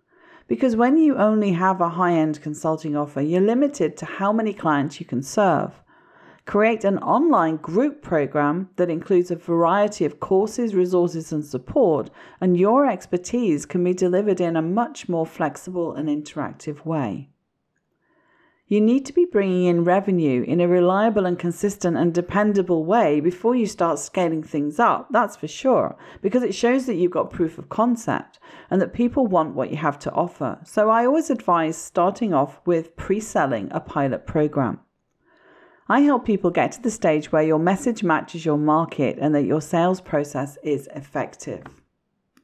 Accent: British